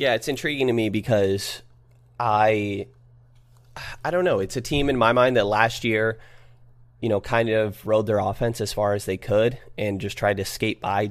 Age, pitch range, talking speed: 20-39, 100-120 Hz, 200 wpm